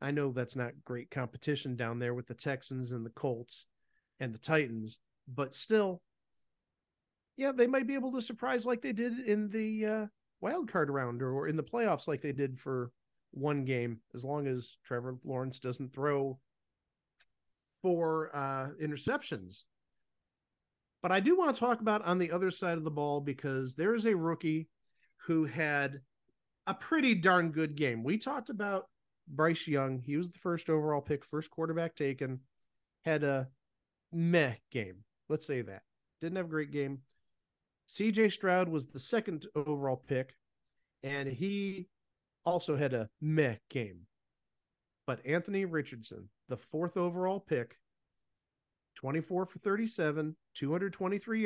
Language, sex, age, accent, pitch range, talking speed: English, male, 50-69, American, 130-180 Hz, 155 wpm